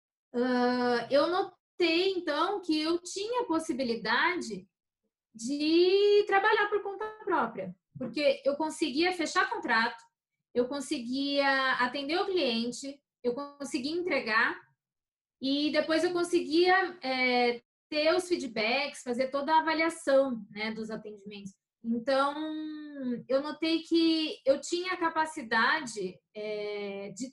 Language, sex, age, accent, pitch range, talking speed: Portuguese, female, 20-39, Brazilian, 225-320 Hz, 110 wpm